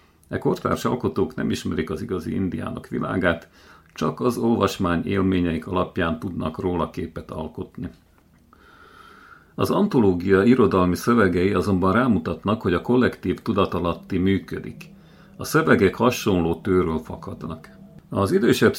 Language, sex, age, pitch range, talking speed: Hungarian, male, 50-69, 85-110 Hz, 115 wpm